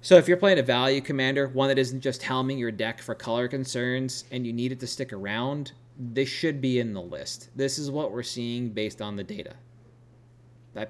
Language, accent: English, American